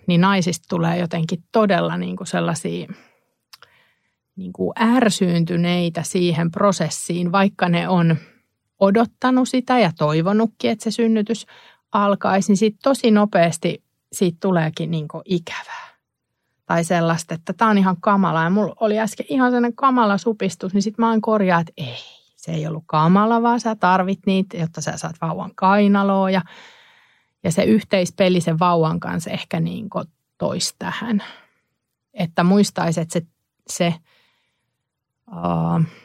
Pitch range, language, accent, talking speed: 165-205 Hz, Finnish, native, 130 wpm